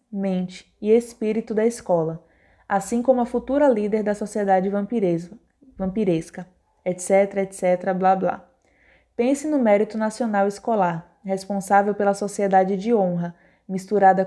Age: 20-39